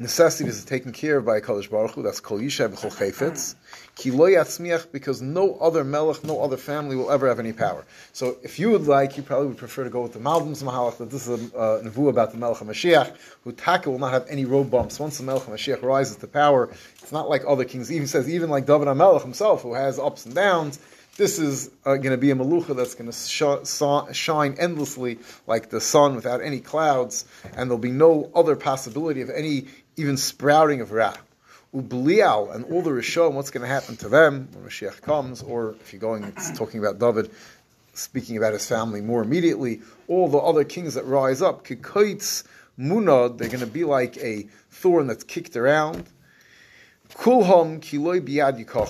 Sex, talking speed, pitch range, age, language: male, 200 wpm, 120-150 Hz, 30-49, English